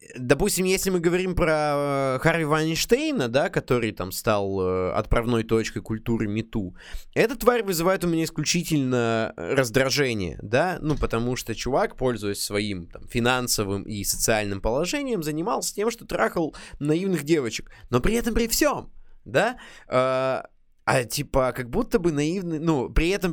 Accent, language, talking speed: native, Russian, 140 wpm